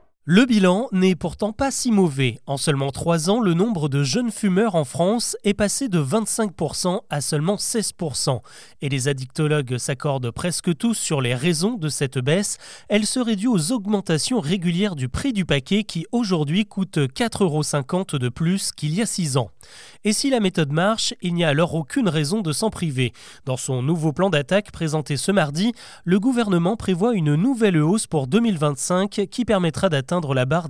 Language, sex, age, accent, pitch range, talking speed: French, male, 30-49, French, 150-210 Hz, 185 wpm